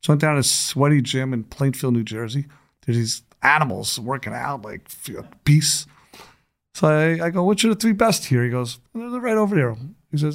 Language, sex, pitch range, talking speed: English, male, 130-175 Hz, 215 wpm